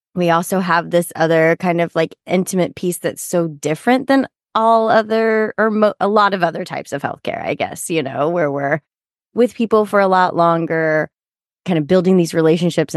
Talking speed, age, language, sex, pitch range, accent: 190 wpm, 20-39, English, female, 160-220 Hz, American